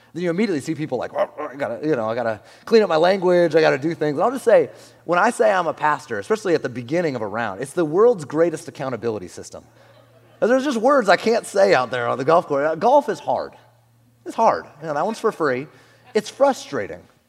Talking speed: 225 wpm